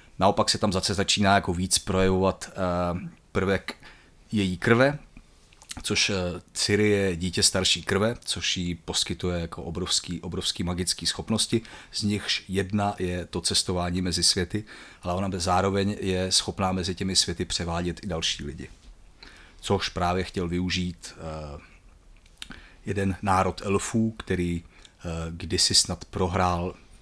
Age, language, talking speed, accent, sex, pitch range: 30-49, Czech, 125 wpm, native, male, 85-95 Hz